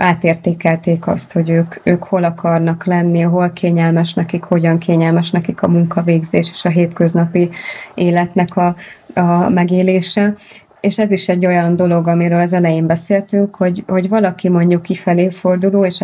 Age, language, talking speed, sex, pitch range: 20-39, Hungarian, 150 wpm, female, 170-185 Hz